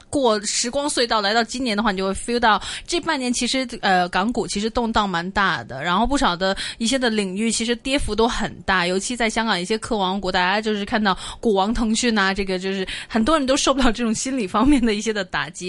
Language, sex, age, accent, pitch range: Chinese, female, 20-39, native, 190-240 Hz